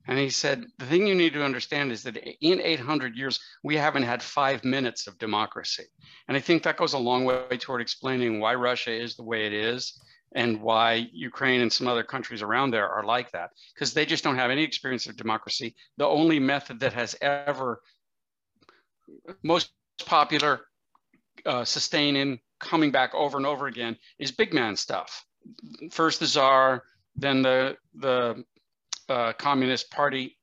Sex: male